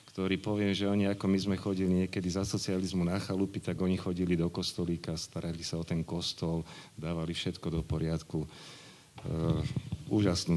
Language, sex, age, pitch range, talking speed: Slovak, male, 40-59, 85-105 Hz, 165 wpm